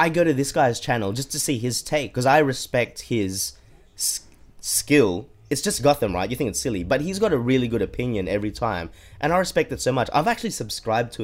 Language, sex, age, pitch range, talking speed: English, male, 20-39, 90-130 Hz, 235 wpm